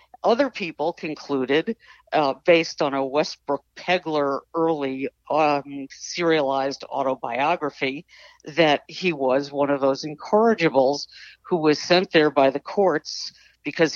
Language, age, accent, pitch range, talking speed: English, 60-79, American, 145-185 Hz, 120 wpm